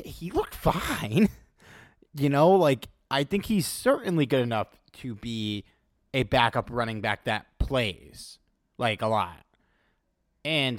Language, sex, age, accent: English, male, 30-49, American